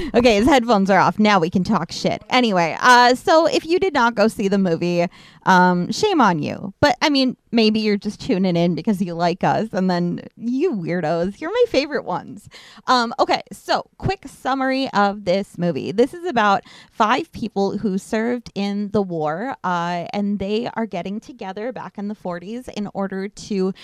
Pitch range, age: 185-235 Hz, 20-39